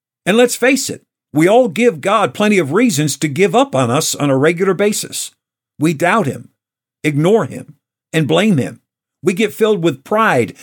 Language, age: English, 50-69